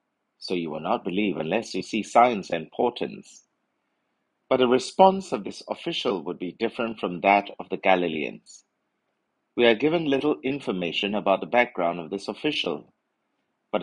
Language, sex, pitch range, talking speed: English, male, 100-130 Hz, 160 wpm